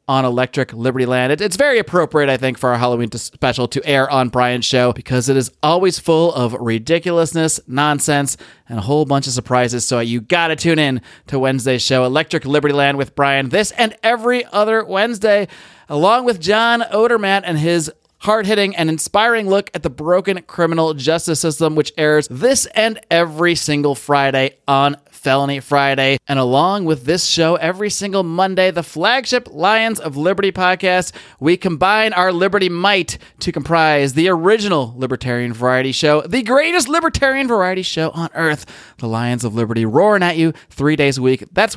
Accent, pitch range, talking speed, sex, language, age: American, 135-190 Hz, 180 wpm, male, English, 30-49